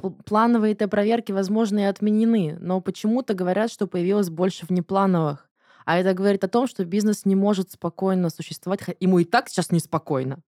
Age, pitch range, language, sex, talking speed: 20-39, 165-205 Hz, Russian, female, 165 wpm